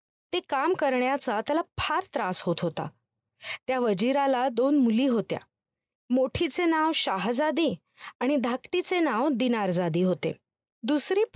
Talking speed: 80 wpm